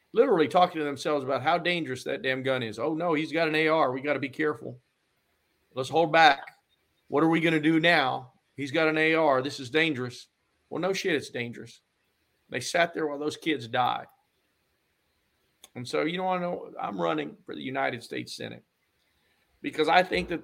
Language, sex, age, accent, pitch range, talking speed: English, male, 50-69, American, 135-185 Hz, 200 wpm